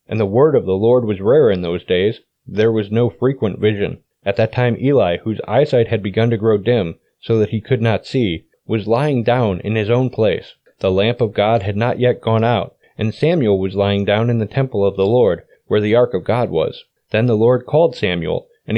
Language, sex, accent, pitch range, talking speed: English, male, American, 110-135 Hz, 230 wpm